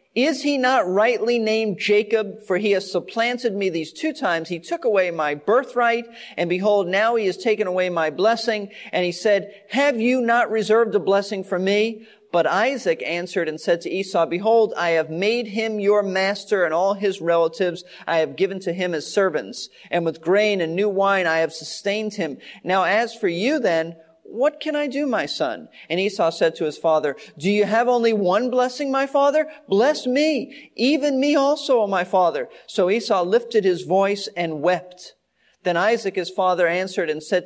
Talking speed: 190 wpm